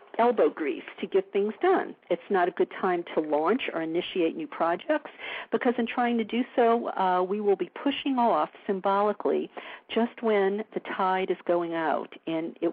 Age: 50-69